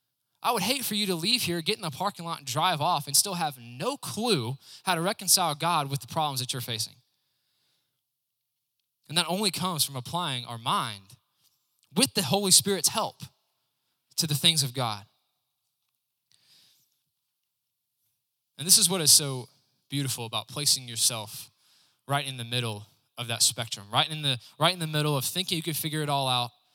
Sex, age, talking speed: male, 20-39, 175 wpm